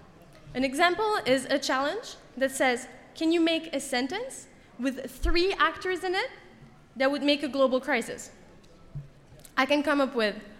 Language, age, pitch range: English, 10-29, 250-335 Hz